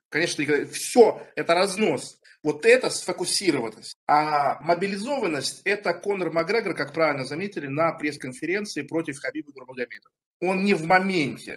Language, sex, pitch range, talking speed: Russian, male, 145-180 Hz, 130 wpm